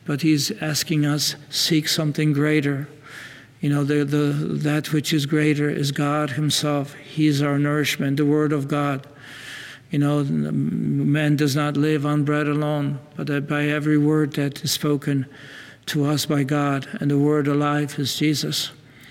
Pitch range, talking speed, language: 140-150 Hz, 170 wpm, English